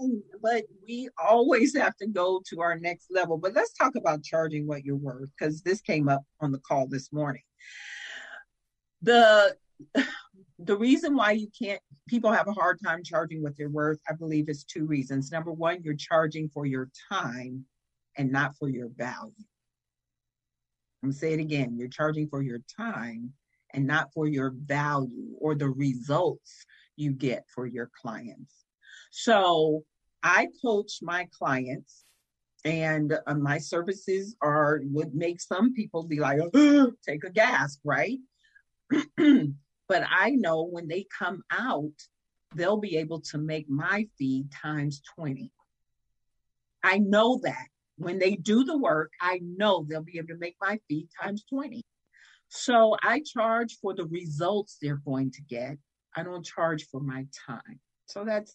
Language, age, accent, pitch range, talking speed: English, 50-69, American, 145-205 Hz, 160 wpm